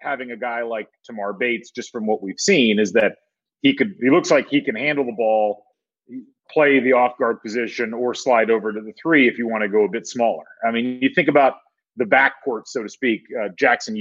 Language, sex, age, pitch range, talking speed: English, male, 30-49, 110-140 Hz, 230 wpm